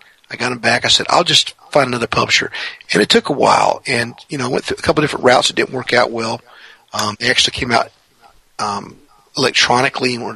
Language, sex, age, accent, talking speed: English, male, 50-69, American, 240 wpm